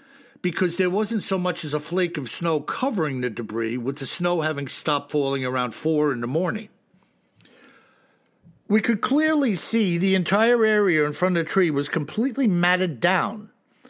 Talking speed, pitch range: 175 wpm, 160-220 Hz